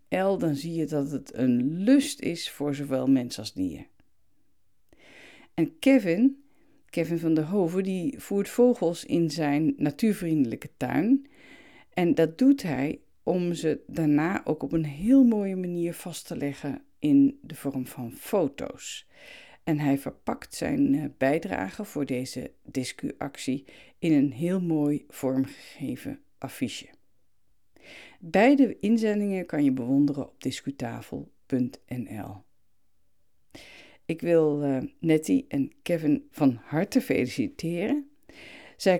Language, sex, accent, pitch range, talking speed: Dutch, female, Dutch, 140-210 Hz, 120 wpm